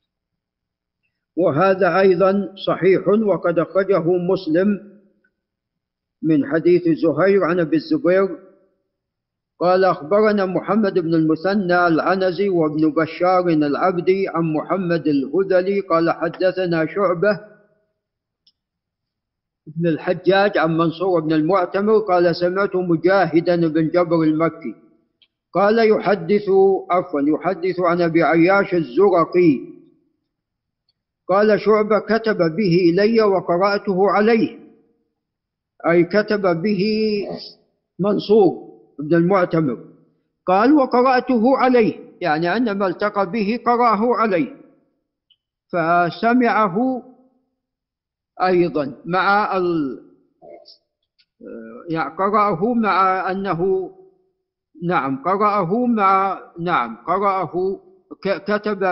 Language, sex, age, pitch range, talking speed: Arabic, male, 50-69, 170-210 Hz, 85 wpm